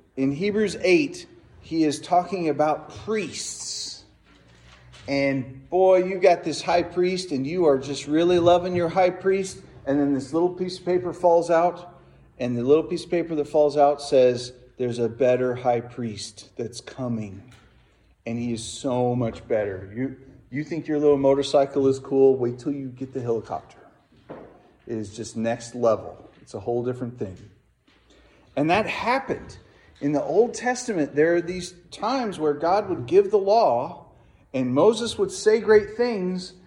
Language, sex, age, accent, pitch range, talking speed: English, male, 40-59, American, 130-205 Hz, 170 wpm